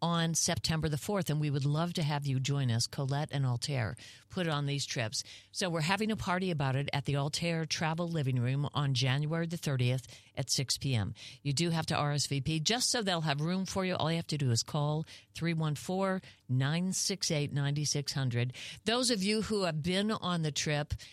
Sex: female